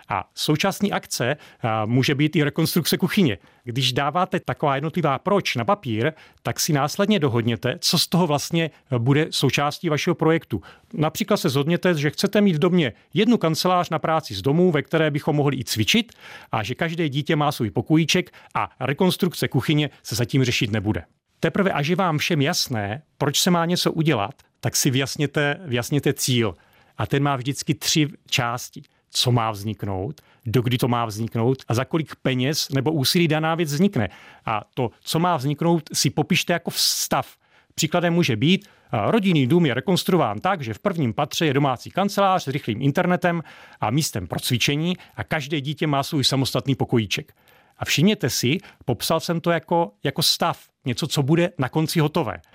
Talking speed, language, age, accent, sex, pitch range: 175 wpm, Czech, 40-59, native, male, 130-170 Hz